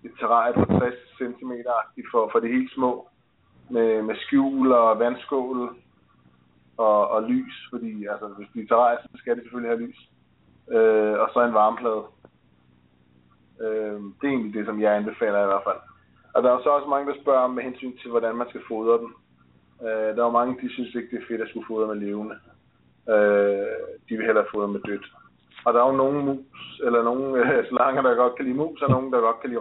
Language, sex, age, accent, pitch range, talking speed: English, male, 20-39, Danish, 105-130 Hz, 205 wpm